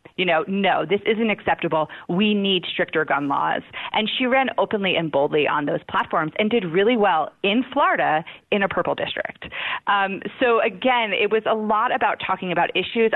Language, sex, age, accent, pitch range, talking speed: English, female, 30-49, American, 165-210 Hz, 185 wpm